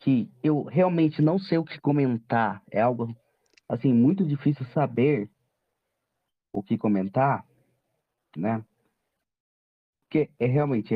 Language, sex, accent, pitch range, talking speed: Portuguese, male, Brazilian, 125-190 Hz, 115 wpm